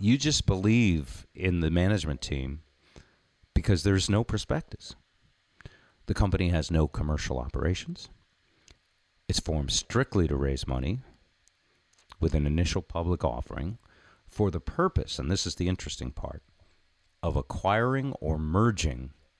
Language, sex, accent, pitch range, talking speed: English, male, American, 75-100 Hz, 125 wpm